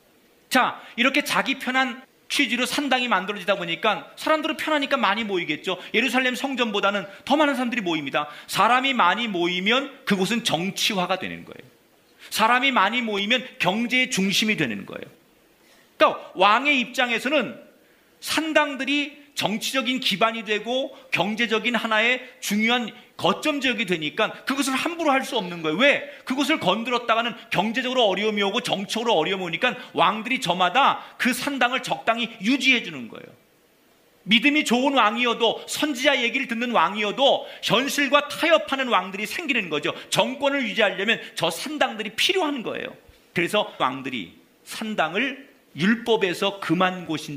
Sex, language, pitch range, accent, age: male, Korean, 200-270 Hz, native, 40-59